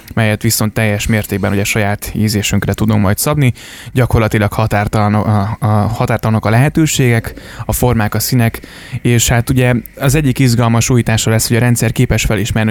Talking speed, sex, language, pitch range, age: 155 wpm, male, Hungarian, 105-120 Hz, 20-39